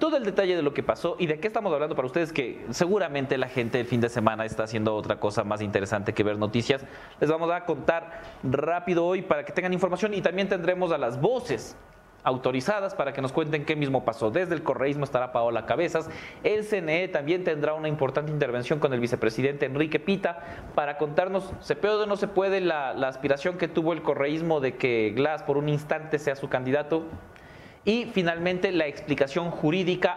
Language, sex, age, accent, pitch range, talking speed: English, male, 30-49, Mexican, 140-180 Hz, 205 wpm